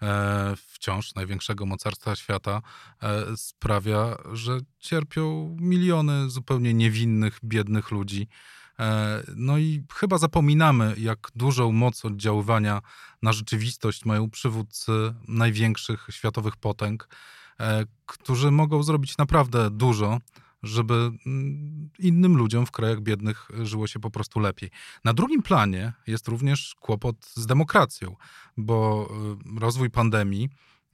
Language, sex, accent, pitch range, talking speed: Polish, male, native, 105-130 Hz, 105 wpm